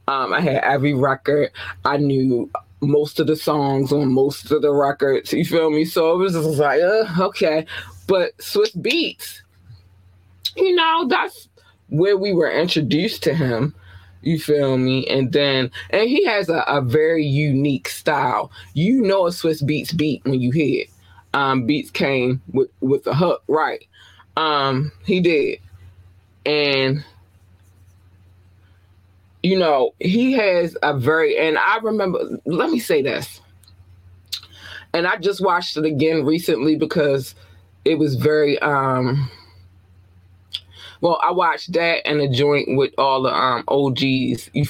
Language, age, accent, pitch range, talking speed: English, 20-39, American, 95-150 Hz, 150 wpm